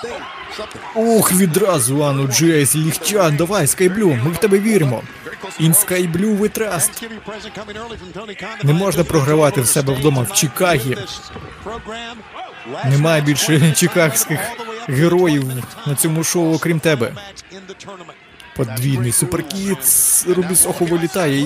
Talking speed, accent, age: 100 wpm, native, 20-39